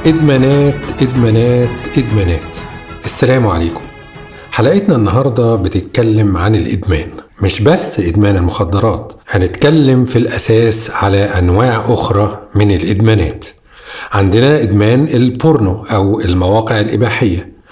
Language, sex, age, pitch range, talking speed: Arabic, male, 40-59, 105-130 Hz, 95 wpm